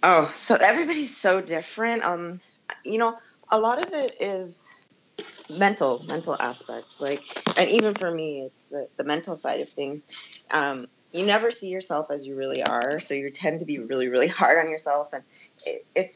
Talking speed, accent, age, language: 180 wpm, American, 20-39, English